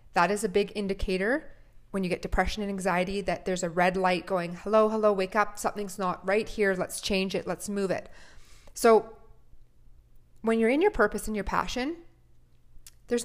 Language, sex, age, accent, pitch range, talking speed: English, female, 30-49, American, 180-205 Hz, 185 wpm